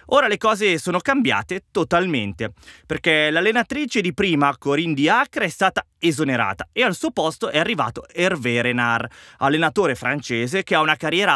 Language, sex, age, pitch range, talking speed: Italian, male, 20-39, 125-185 Hz, 155 wpm